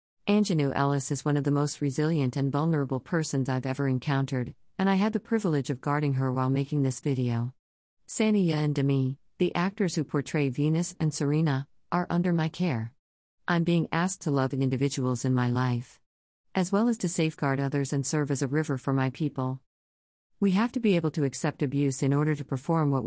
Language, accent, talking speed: English, American, 200 wpm